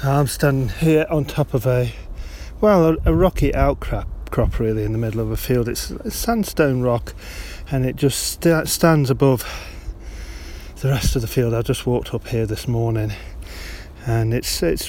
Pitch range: 95-130 Hz